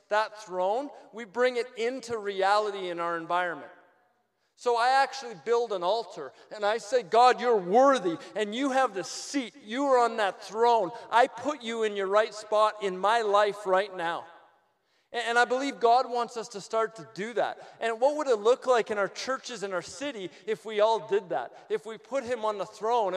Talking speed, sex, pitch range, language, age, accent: 205 wpm, male, 200-255 Hz, English, 40-59, American